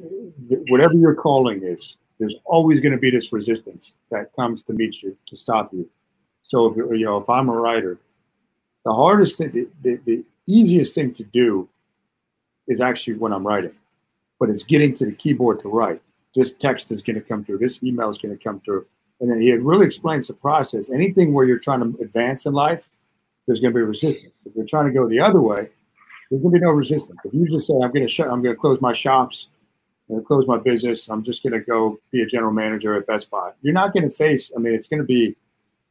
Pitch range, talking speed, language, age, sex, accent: 110-140 Hz, 230 wpm, English, 50-69, male, American